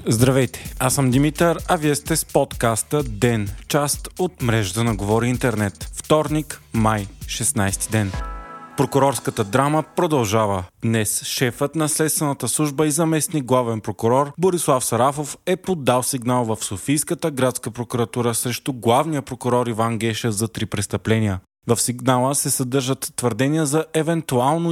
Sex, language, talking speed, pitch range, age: male, Bulgarian, 135 wpm, 115-145 Hz, 20-39